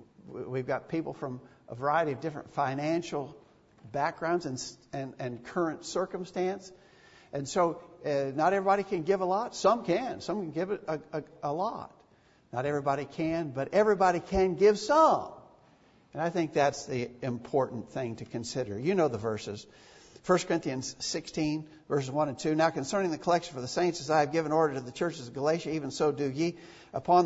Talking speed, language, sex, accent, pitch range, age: 185 wpm, English, male, American, 135-180 Hz, 50-69